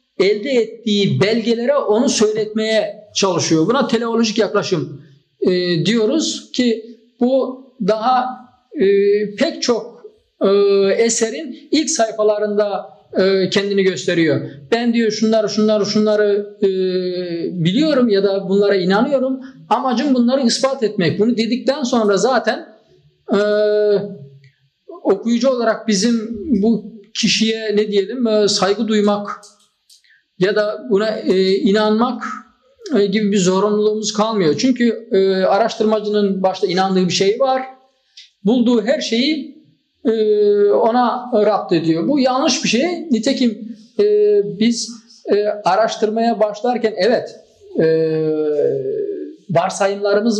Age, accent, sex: 50-69, native, male